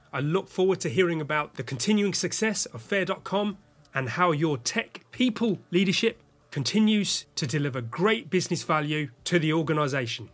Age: 30-49